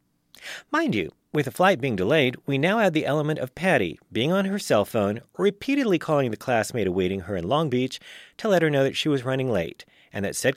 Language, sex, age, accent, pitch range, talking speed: English, male, 40-59, American, 100-160 Hz, 225 wpm